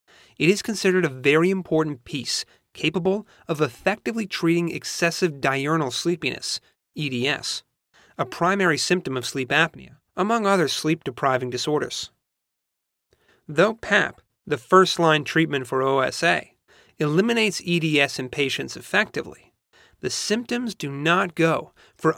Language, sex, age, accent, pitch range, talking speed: English, male, 30-49, American, 140-185 Hz, 115 wpm